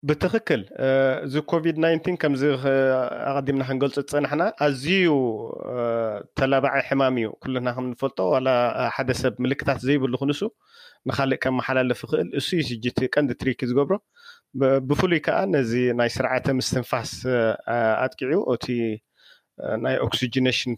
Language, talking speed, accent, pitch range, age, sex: English, 140 wpm, Lebanese, 120-140 Hz, 30-49, male